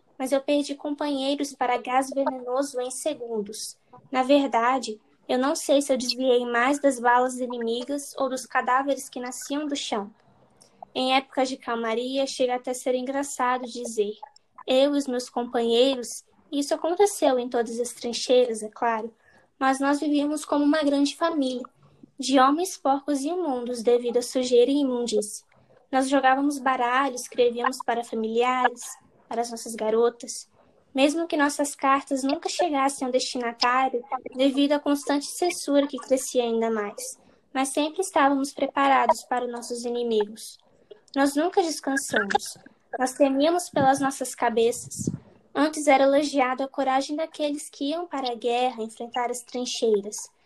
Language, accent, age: Portuguese, Brazilian, 10-29